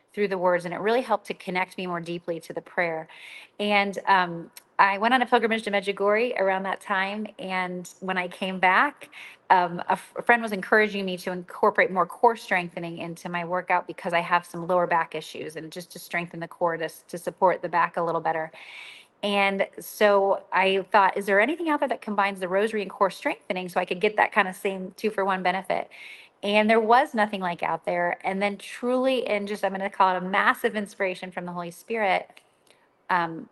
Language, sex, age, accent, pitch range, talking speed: English, female, 30-49, American, 180-215 Hz, 215 wpm